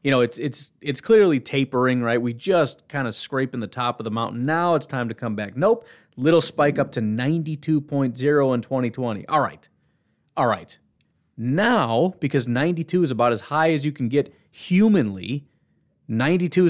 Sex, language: male, English